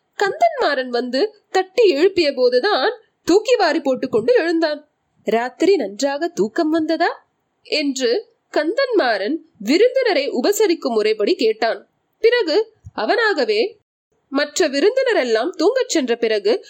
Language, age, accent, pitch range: Tamil, 20-39, native, 255-410 Hz